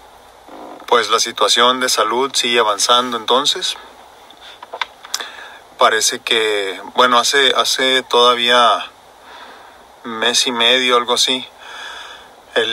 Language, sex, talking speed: Spanish, male, 95 wpm